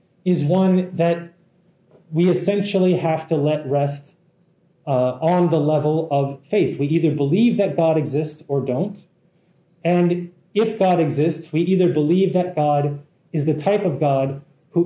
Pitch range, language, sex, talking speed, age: 150-180 Hz, English, male, 155 wpm, 30-49